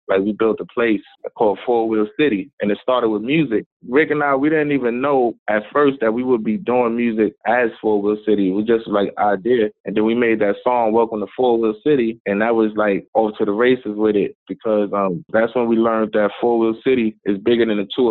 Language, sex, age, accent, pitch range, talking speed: English, male, 20-39, American, 110-125 Hz, 250 wpm